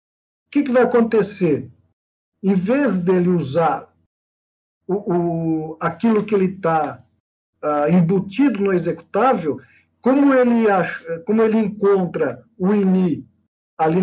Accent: Brazilian